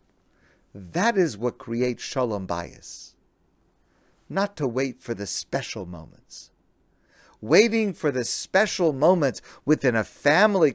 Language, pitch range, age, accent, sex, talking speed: English, 90-150 Hz, 50-69, American, male, 115 wpm